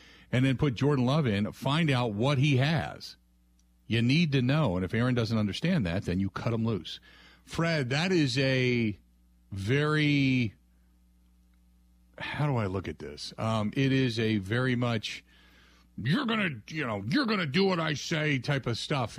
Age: 50-69